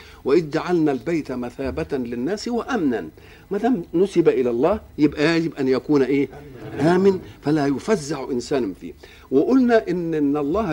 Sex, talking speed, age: male, 135 wpm, 50-69